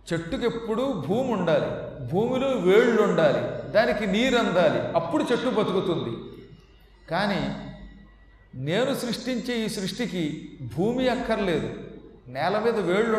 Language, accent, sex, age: Telugu, native, male, 40-59